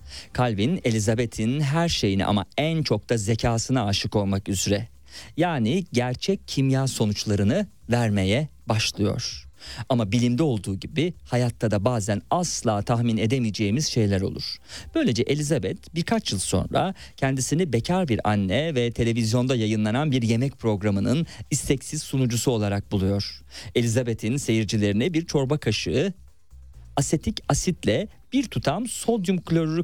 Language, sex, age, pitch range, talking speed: Turkish, male, 50-69, 105-140 Hz, 120 wpm